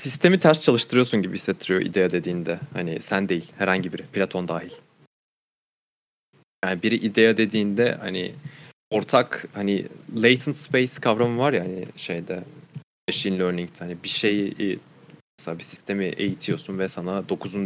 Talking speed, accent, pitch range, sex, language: 135 wpm, native, 95-115 Hz, male, Turkish